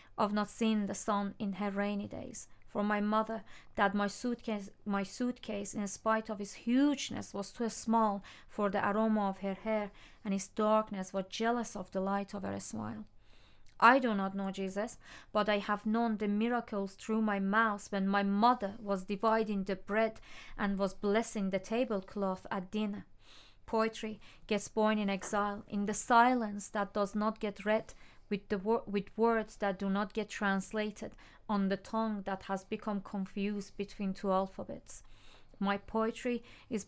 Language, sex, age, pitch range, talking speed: English, female, 30-49, 200-220 Hz, 170 wpm